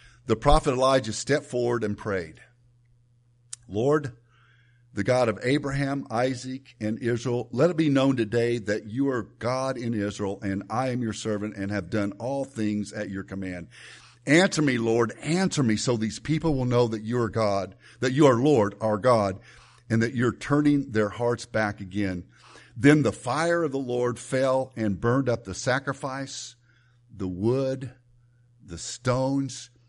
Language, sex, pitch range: English, male, 110-130 Hz